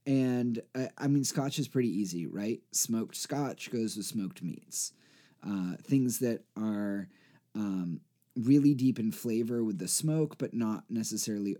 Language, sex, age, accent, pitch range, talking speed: English, male, 30-49, American, 100-130 Hz, 150 wpm